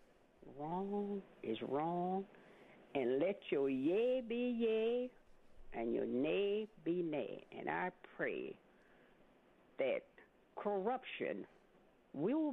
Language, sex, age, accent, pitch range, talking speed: English, female, 60-79, American, 170-245 Hz, 95 wpm